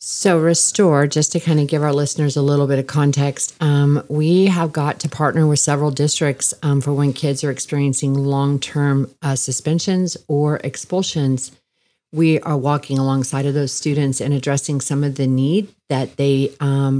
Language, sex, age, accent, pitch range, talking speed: English, female, 40-59, American, 140-155 Hz, 175 wpm